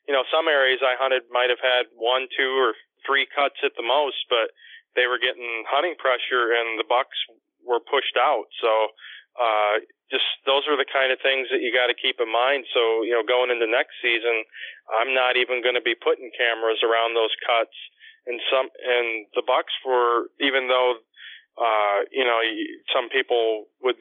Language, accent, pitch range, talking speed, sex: English, American, 115-135 Hz, 190 wpm, male